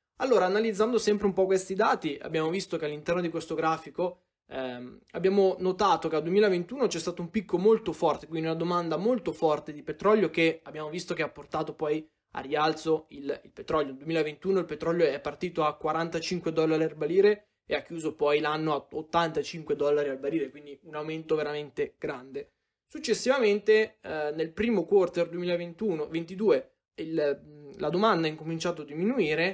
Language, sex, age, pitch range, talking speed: Italian, male, 20-39, 155-190 Hz, 170 wpm